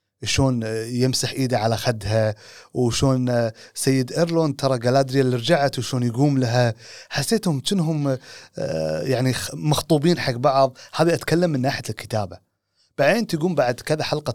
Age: 30-49